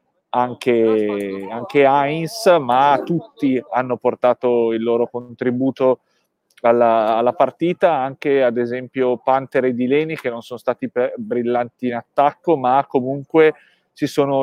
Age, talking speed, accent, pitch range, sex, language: 30-49, 125 wpm, native, 120-140 Hz, male, Italian